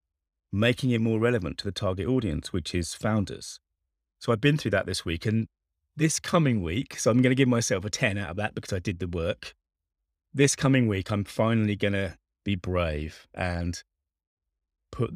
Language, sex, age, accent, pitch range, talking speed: English, male, 30-49, British, 85-115 Hz, 195 wpm